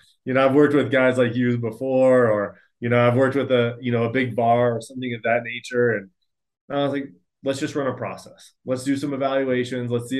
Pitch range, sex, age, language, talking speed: 115-135 Hz, male, 30-49, English, 240 wpm